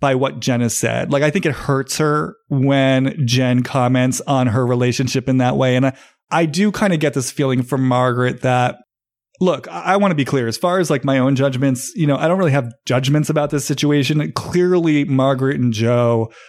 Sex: male